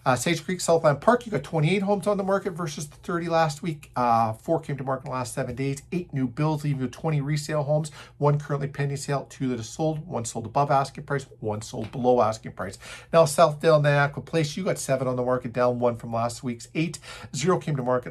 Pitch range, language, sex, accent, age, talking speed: 125-160 Hz, English, male, American, 50-69, 240 wpm